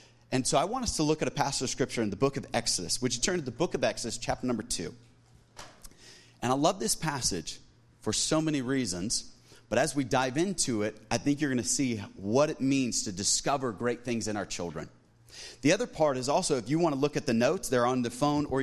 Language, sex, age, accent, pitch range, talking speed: English, male, 30-49, American, 115-140 Hz, 245 wpm